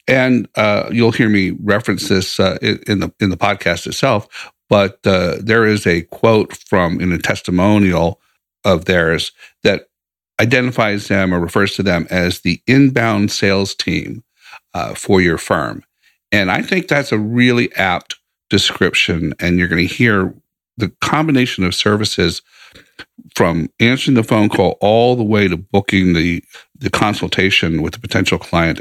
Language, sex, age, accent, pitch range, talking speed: English, male, 50-69, American, 90-115 Hz, 160 wpm